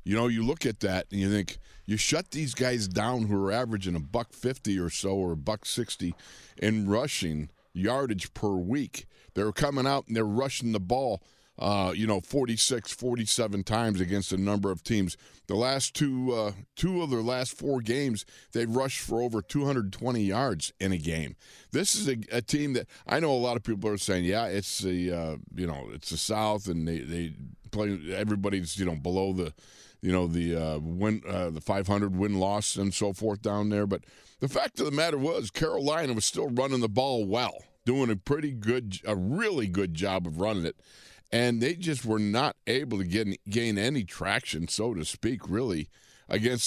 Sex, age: male, 50-69